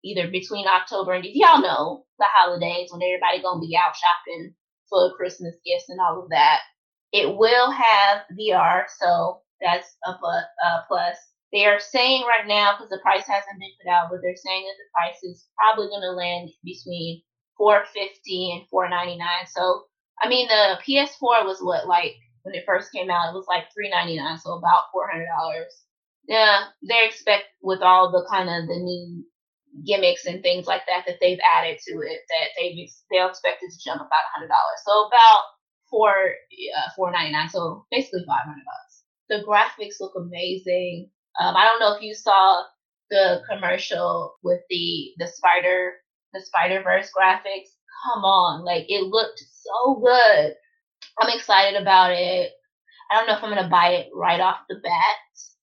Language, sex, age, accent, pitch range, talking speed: English, female, 20-39, American, 180-225 Hz, 180 wpm